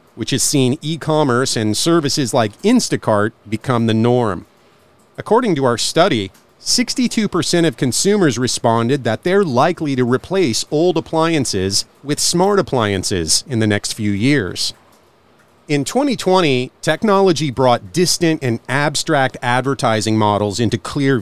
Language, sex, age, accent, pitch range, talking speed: English, male, 40-59, American, 115-160 Hz, 125 wpm